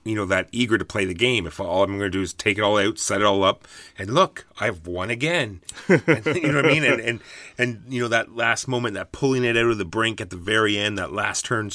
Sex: male